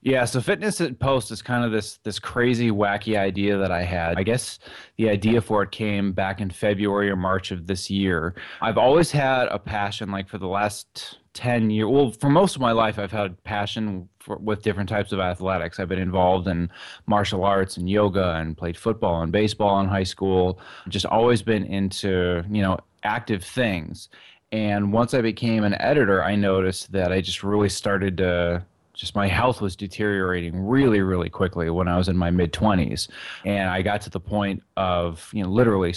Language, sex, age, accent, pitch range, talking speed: English, male, 20-39, American, 95-110 Hz, 200 wpm